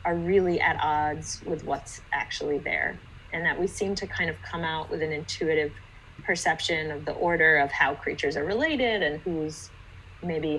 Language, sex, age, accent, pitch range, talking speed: English, female, 30-49, American, 150-190 Hz, 180 wpm